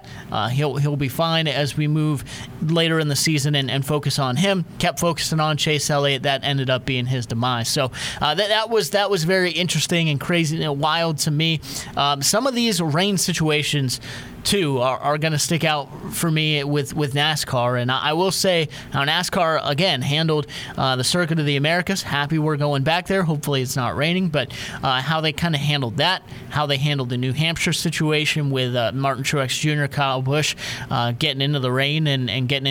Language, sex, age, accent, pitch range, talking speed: English, male, 30-49, American, 135-170 Hz, 205 wpm